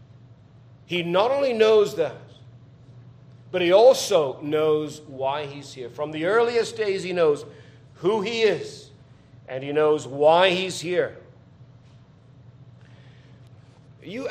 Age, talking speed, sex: 40-59, 115 wpm, male